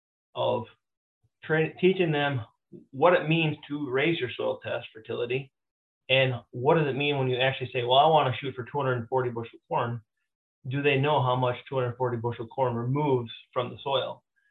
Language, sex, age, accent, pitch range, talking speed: English, male, 30-49, American, 120-145 Hz, 180 wpm